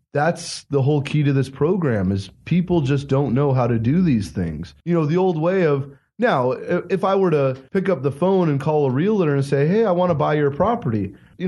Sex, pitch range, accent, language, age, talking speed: male, 135-185 Hz, American, English, 30-49, 240 wpm